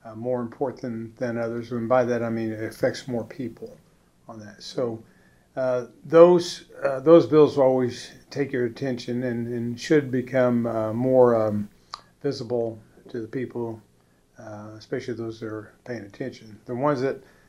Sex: male